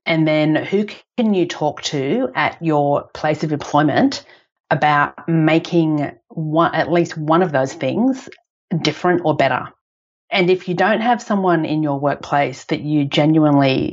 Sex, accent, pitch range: female, Australian, 145-170 Hz